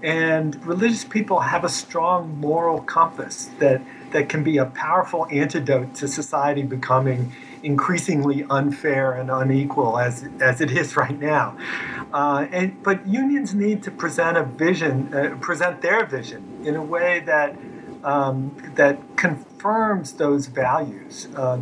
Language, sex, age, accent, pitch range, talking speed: English, male, 50-69, American, 135-170 Hz, 140 wpm